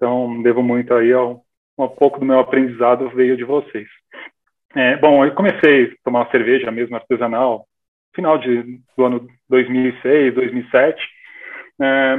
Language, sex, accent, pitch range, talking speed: Portuguese, male, Brazilian, 130-165 Hz, 140 wpm